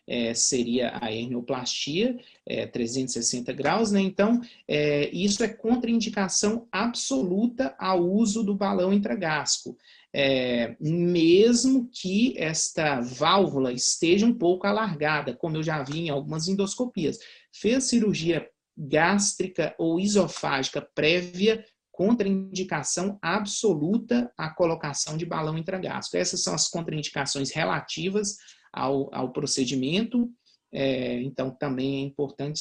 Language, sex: Portuguese, male